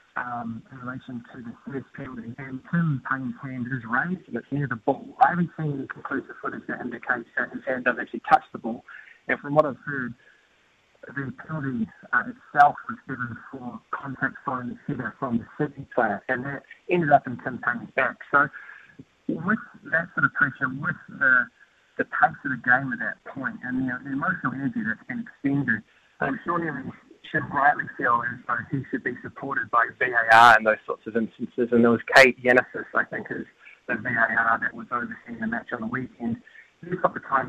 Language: English